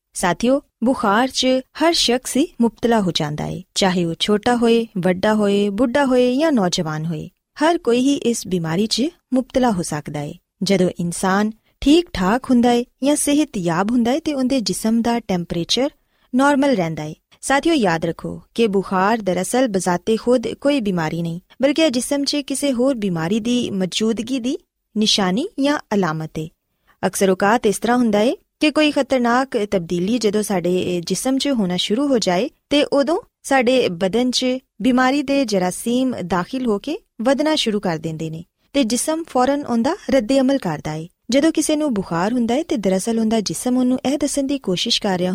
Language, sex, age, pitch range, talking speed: Urdu, female, 20-39, 185-270 Hz, 90 wpm